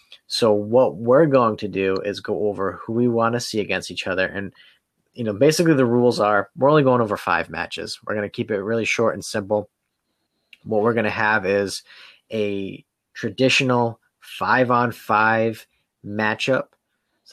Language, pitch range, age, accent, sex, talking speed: English, 100-115 Hz, 30-49, American, male, 180 wpm